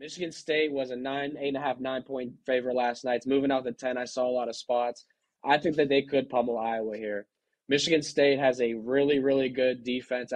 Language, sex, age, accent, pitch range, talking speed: English, male, 20-39, American, 120-135 Hz, 240 wpm